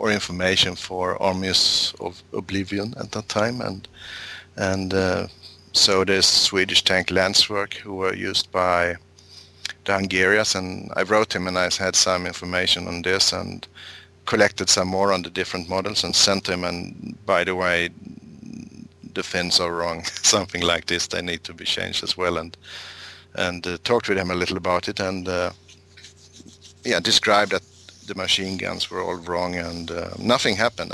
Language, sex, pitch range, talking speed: English, male, 90-100 Hz, 170 wpm